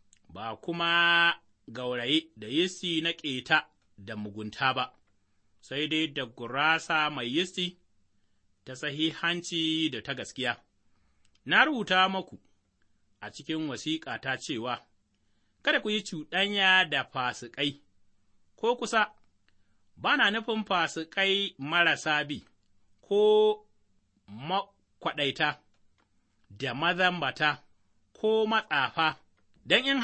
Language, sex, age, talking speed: English, male, 30-49, 75 wpm